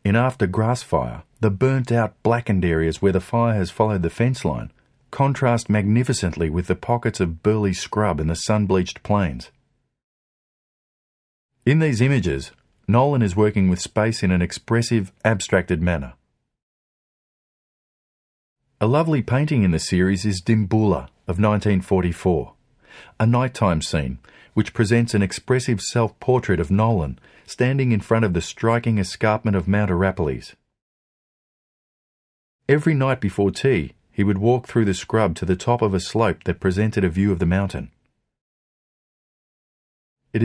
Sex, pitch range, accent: male, 95-115 Hz, Australian